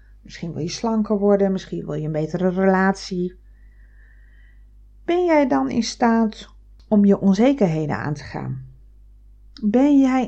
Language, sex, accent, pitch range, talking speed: Dutch, female, Dutch, 155-225 Hz, 140 wpm